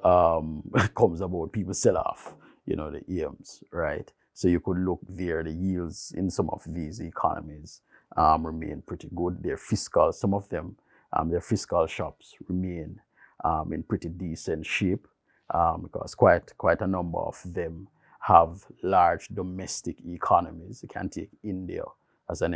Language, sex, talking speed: English, male, 160 wpm